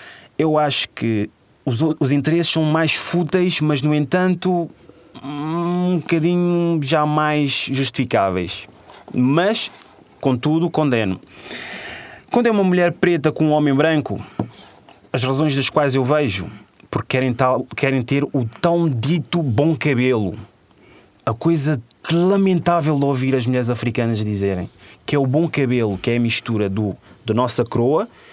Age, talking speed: 20-39, 135 wpm